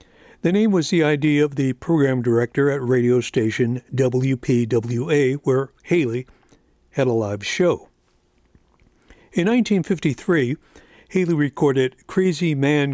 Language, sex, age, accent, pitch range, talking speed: English, male, 60-79, American, 125-160 Hz, 115 wpm